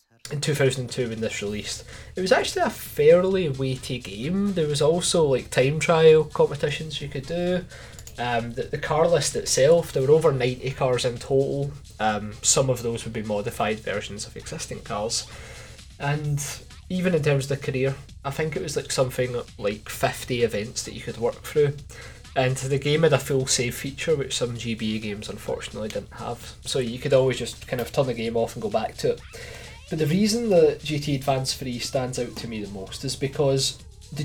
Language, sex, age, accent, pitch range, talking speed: English, male, 20-39, British, 120-150 Hz, 200 wpm